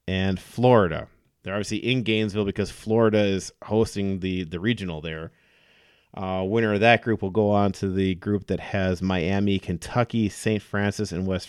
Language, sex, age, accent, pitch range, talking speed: English, male, 30-49, American, 95-115 Hz, 170 wpm